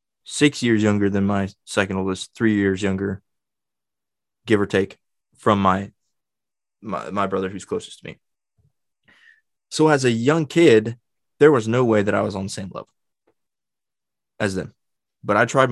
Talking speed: 165 wpm